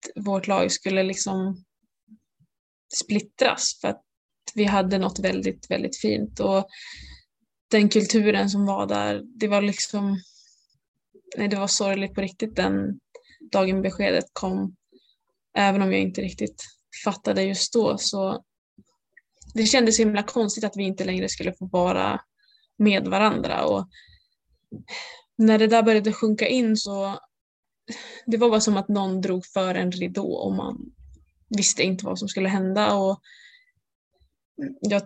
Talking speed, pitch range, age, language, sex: 140 wpm, 190-215 Hz, 20-39, Swedish, female